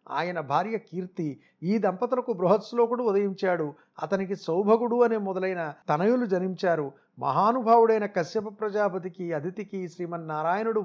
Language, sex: Telugu, male